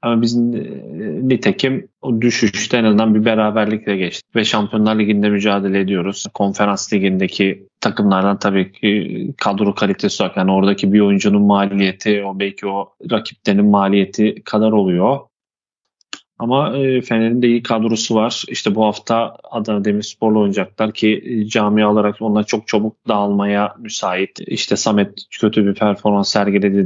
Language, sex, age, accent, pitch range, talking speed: Turkish, male, 30-49, native, 100-120 Hz, 135 wpm